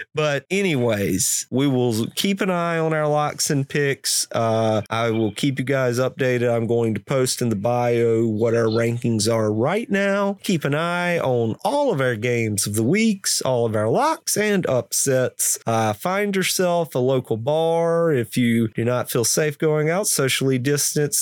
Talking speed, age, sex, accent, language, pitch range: 185 wpm, 30-49, male, American, English, 120-155 Hz